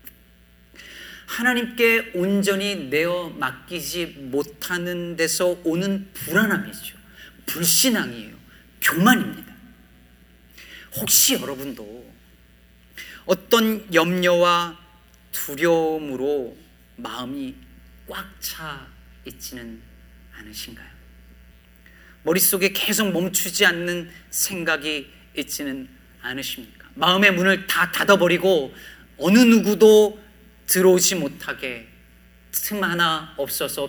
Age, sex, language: 40-59, male, Korean